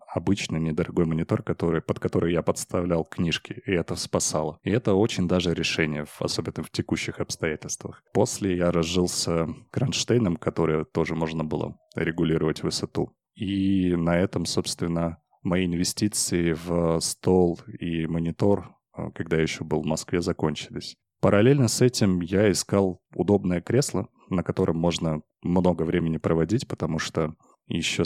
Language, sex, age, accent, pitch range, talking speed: Russian, male, 20-39, native, 80-95 Hz, 135 wpm